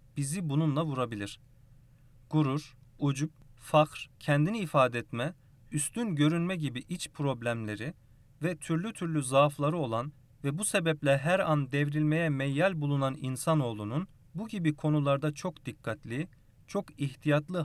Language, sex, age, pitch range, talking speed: Turkish, male, 40-59, 125-155 Hz, 120 wpm